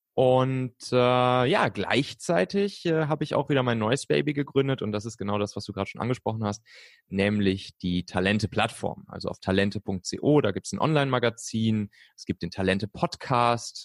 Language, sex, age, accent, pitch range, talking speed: German, male, 30-49, German, 100-120 Hz, 170 wpm